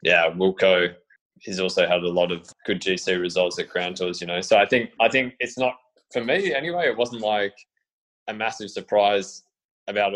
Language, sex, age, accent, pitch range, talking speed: English, male, 20-39, Australian, 90-100 Hz, 195 wpm